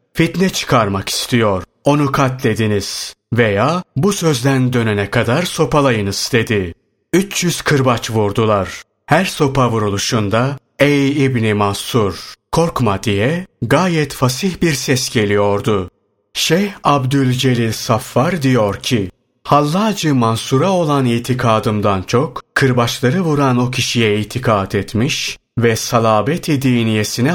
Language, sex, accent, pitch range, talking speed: Turkish, male, native, 110-145 Hz, 100 wpm